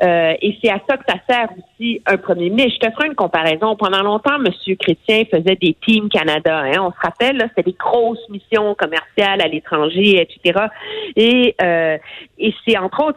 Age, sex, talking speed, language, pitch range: 50-69, female, 200 wpm, French, 180-255 Hz